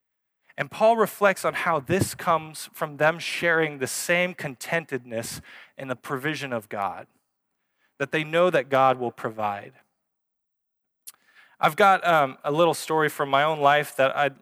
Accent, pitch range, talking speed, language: American, 130-170 Hz, 155 wpm, English